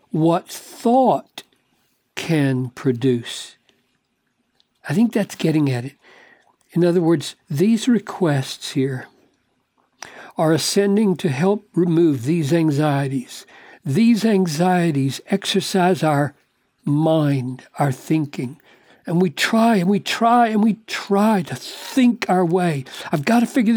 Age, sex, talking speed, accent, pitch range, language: 60-79, male, 120 wpm, American, 145-210 Hz, English